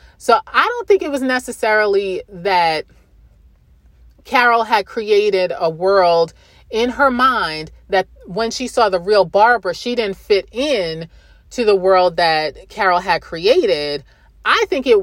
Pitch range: 190-280 Hz